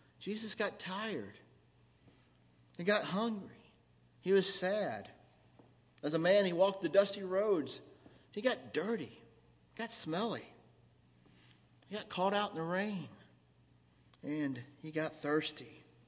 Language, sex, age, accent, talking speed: English, male, 50-69, American, 125 wpm